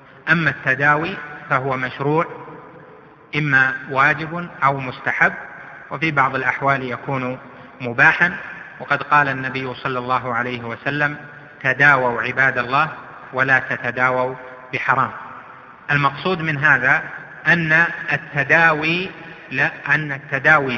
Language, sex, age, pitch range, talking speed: Arabic, male, 30-49, 130-155 Hz, 90 wpm